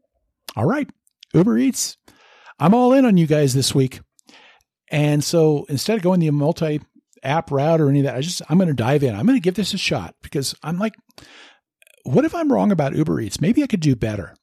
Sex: male